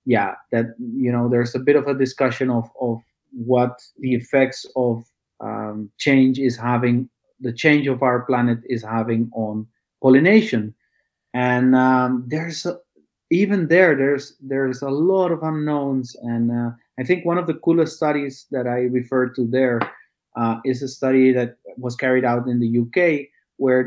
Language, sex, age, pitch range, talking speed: English, male, 30-49, 120-145 Hz, 170 wpm